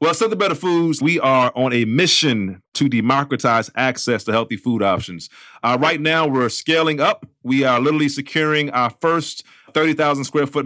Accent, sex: American, male